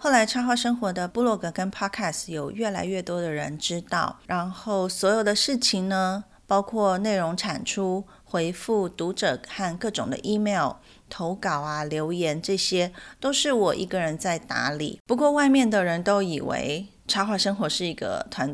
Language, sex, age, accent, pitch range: Chinese, female, 30-49, native, 170-220 Hz